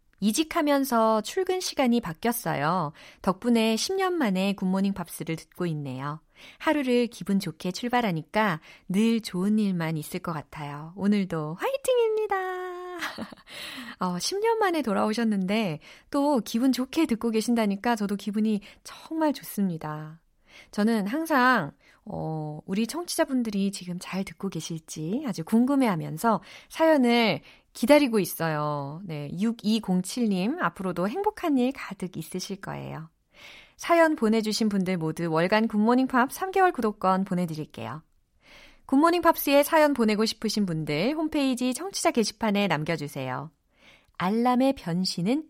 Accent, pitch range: native, 175-270 Hz